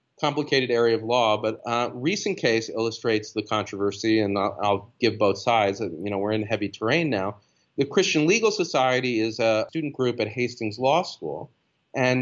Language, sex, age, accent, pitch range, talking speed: English, male, 30-49, American, 105-140 Hz, 180 wpm